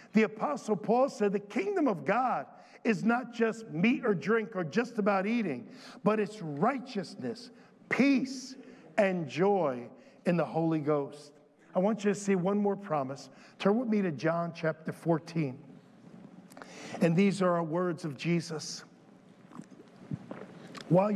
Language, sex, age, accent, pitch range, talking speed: English, male, 50-69, American, 155-210 Hz, 145 wpm